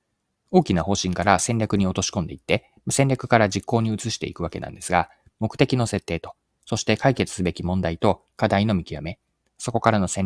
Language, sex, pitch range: Japanese, male, 90-125 Hz